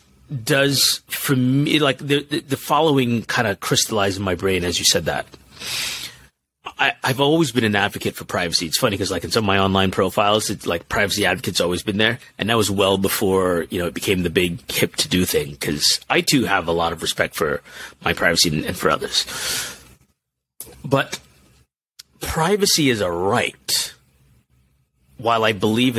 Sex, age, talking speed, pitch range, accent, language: male, 30-49, 180 wpm, 90-135 Hz, American, English